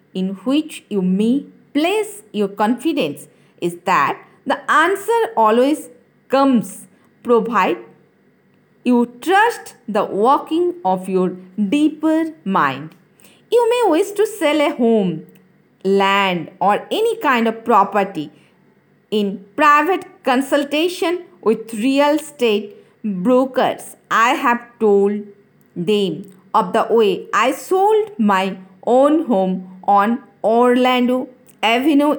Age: 50-69